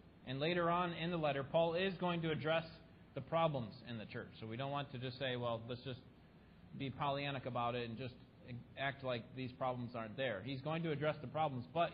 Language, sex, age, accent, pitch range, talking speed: English, male, 30-49, American, 130-165 Hz, 225 wpm